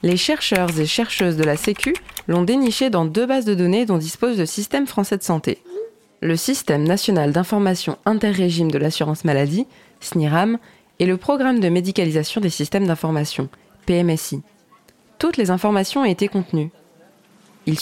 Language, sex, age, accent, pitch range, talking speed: French, female, 20-39, French, 155-205 Hz, 155 wpm